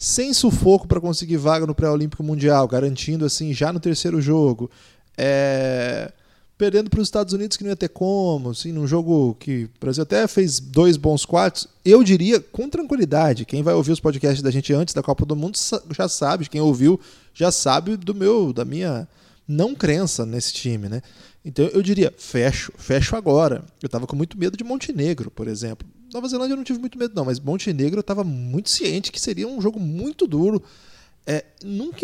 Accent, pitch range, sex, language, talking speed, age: Brazilian, 130-195 Hz, male, Portuguese, 195 wpm, 20-39